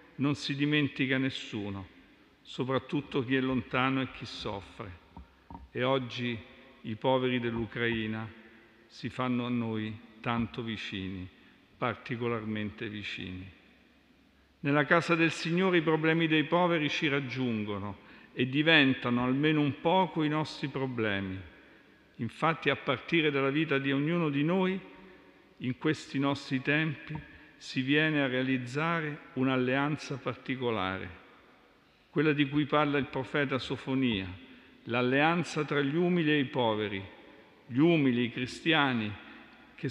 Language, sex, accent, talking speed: Italian, male, native, 120 wpm